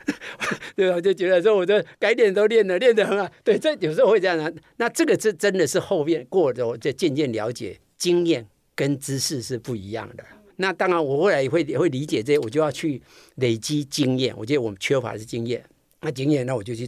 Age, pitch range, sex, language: 50-69, 120-165 Hz, male, Chinese